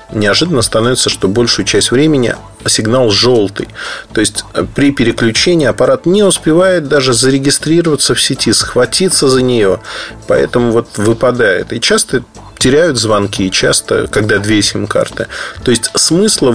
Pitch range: 105-145 Hz